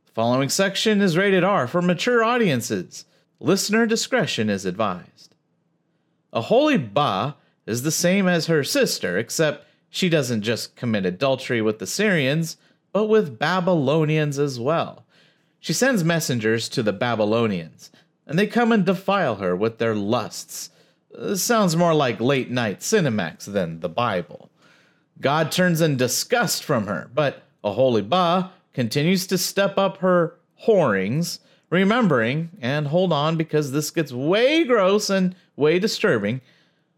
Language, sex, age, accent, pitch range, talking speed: English, male, 40-59, American, 135-195 Hz, 140 wpm